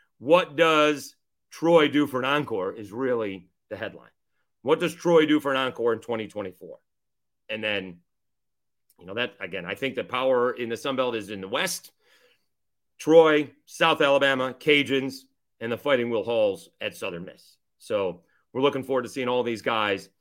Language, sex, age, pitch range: English, male, 40-59, 125-165 Hz